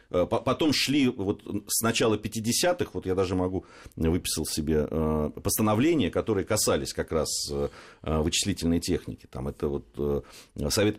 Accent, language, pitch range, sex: native, Russian, 85-110 Hz, male